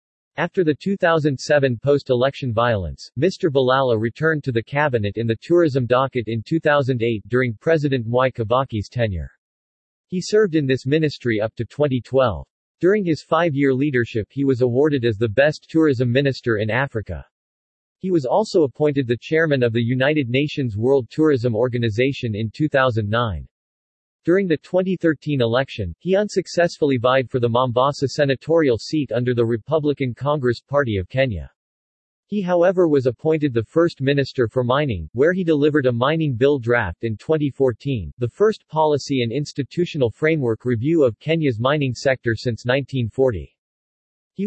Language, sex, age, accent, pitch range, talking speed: English, male, 40-59, American, 120-150 Hz, 150 wpm